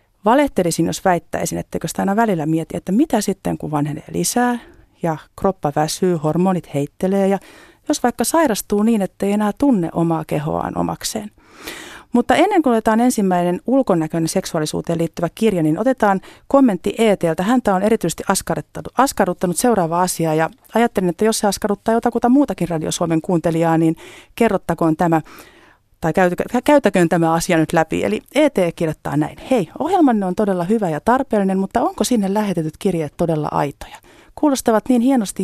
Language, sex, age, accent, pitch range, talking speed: Finnish, female, 40-59, native, 165-230 Hz, 150 wpm